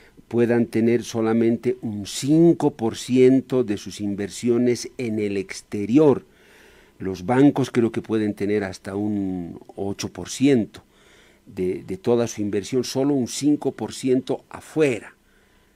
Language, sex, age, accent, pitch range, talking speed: Spanish, male, 50-69, Spanish, 110-155 Hz, 110 wpm